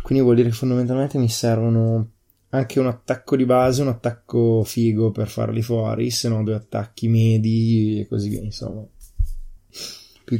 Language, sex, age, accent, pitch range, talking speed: Italian, male, 20-39, native, 105-120 Hz, 160 wpm